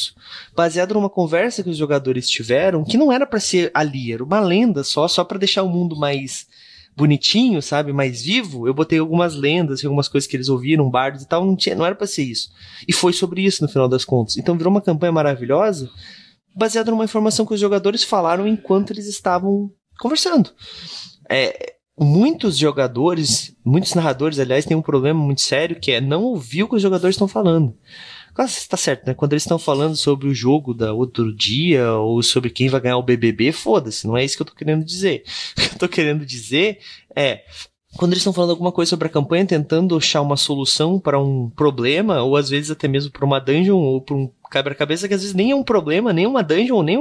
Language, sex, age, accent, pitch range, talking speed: Portuguese, male, 20-39, Brazilian, 140-190 Hz, 210 wpm